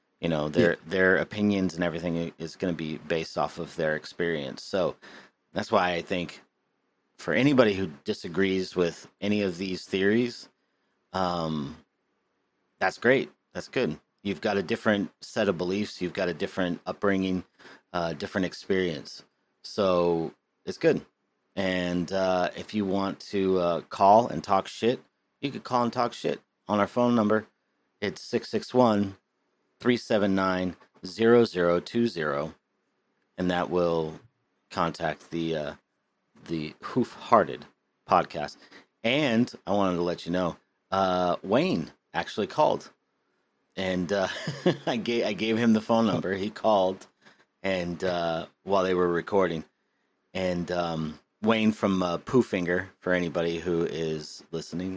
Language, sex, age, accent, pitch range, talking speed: English, male, 40-59, American, 85-100 Hz, 145 wpm